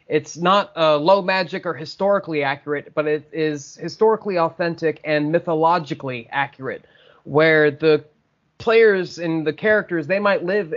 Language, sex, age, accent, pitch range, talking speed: English, male, 30-49, American, 145-170 Hz, 145 wpm